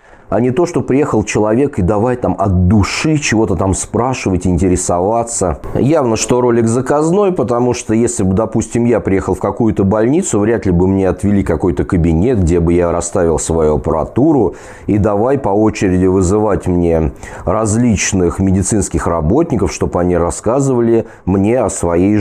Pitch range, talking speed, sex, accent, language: 95-125 Hz, 155 wpm, male, native, Russian